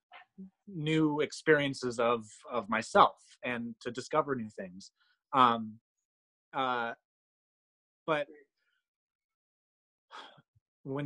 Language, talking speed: English, 75 wpm